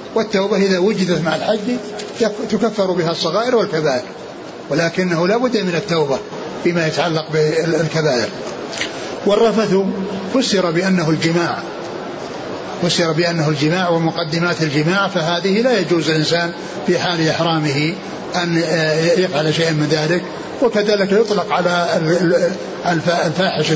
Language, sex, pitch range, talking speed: Arabic, male, 165-195 Hz, 105 wpm